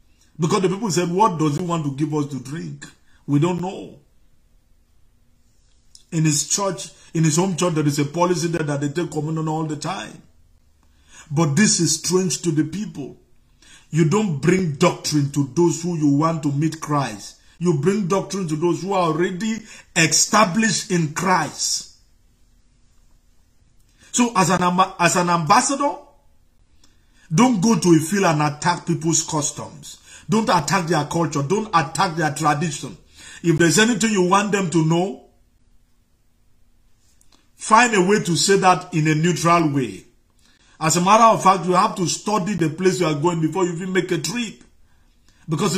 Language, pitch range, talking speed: English, 150-190 Hz, 165 wpm